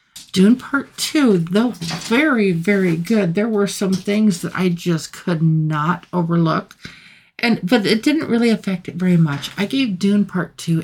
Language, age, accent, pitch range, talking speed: English, 50-69, American, 165-200 Hz, 170 wpm